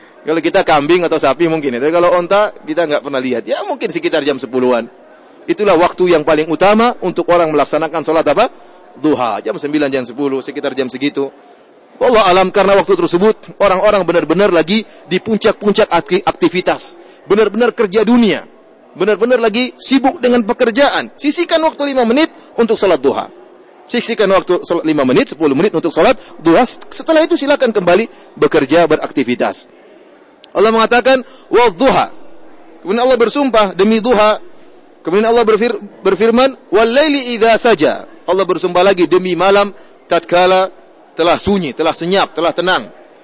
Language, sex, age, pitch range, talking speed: English, male, 30-49, 170-225 Hz, 145 wpm